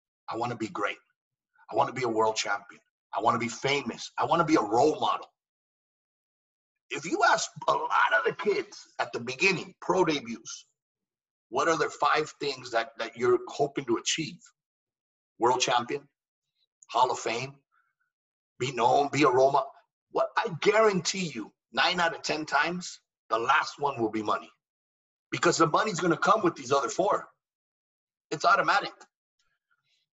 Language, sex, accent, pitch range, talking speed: English, male, American, 135-210 Hz, 160 wpm